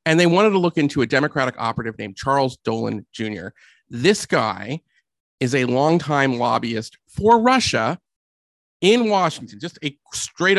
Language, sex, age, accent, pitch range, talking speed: English, male, 40-59, American, 120-170 Hz, 145 wpm